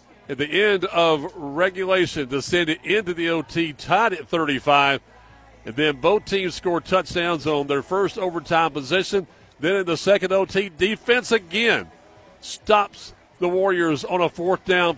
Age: 50-69